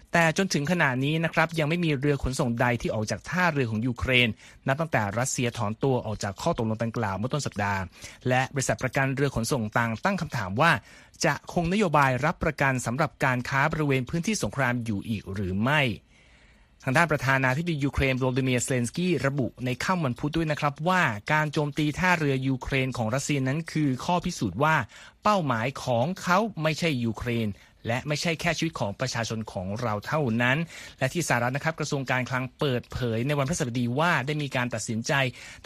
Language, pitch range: Thai, 120-155 Hz